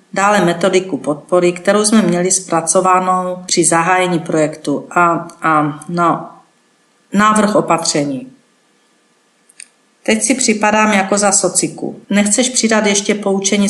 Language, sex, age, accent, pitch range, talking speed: Czech, female, 40-59, native, 170-200 Hz, 110 wpm